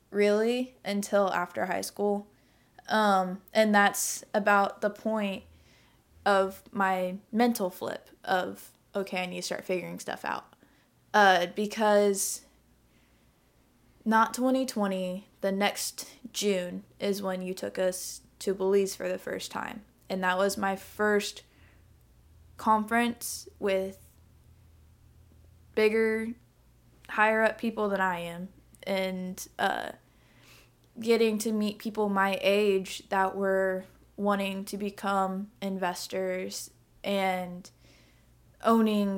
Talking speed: 110 wpm